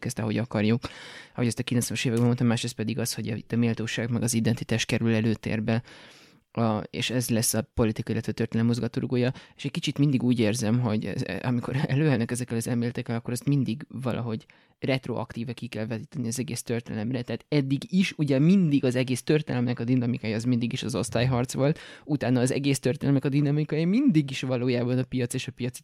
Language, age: Hungarian, 20-39